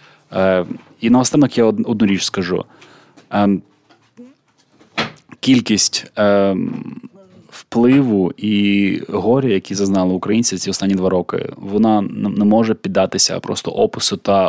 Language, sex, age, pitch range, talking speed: Ukrainian, male, 20-39, 100-115 Hz, 115 wpm